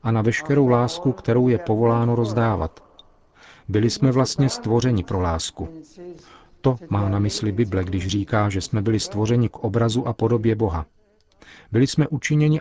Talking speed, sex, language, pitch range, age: 155 wpm, male, Czech, 105-125 Hz, 40-59